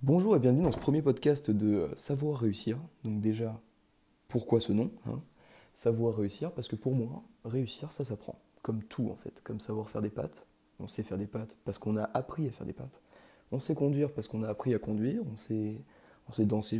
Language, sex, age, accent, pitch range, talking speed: French, male, 20-39, French, 110-130 Hz, 220 wpm